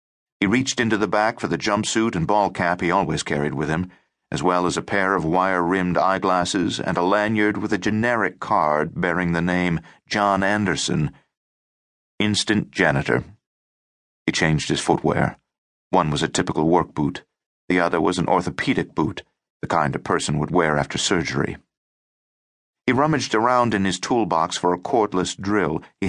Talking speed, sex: 170 wpm, male